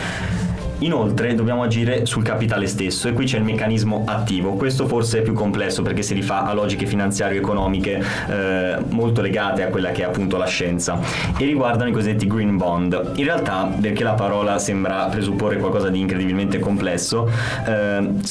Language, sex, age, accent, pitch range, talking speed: Italian, male, 20-39, native, 100-115 Hz, 165 wpm